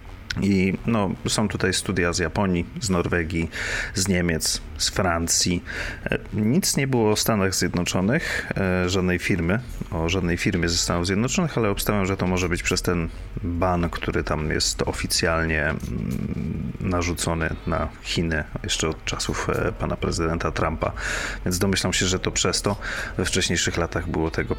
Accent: native